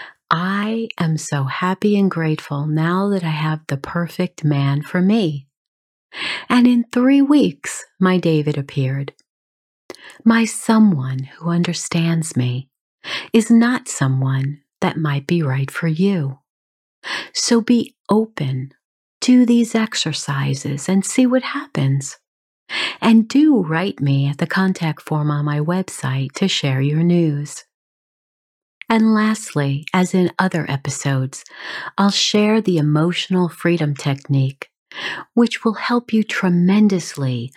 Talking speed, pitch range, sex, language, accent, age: 125 wpm, 140-205 Hz, female, English, American, 40-59